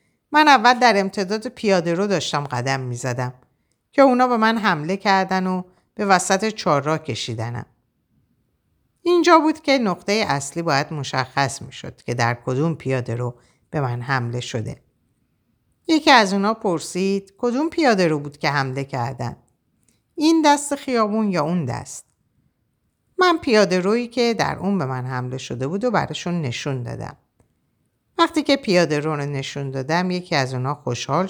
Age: 50-69